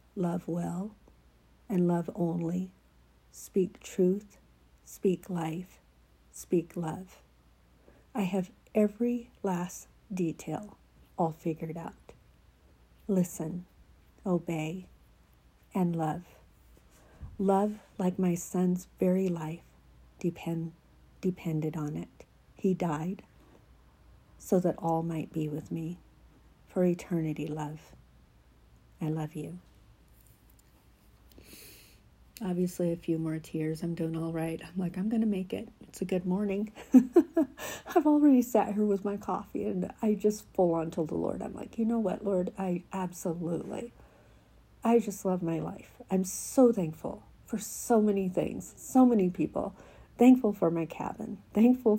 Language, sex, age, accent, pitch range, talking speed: English, female, 50-69, American, 160-195 Hz, 125 wpm